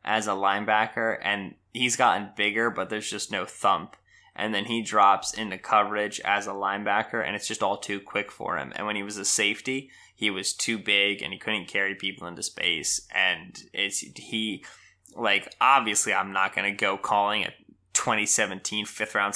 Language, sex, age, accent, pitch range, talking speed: English, male, 20-39, American, 100-115 Hz, 185 wpm